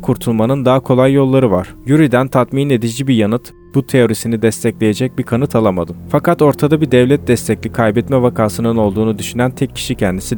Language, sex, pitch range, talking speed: Turkish, male, 110-135 Hz, 160 wpm